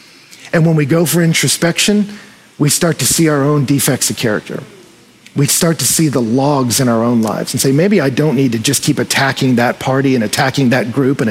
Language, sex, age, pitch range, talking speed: English, male, 40-59, 135-195 Hz, 225 wpm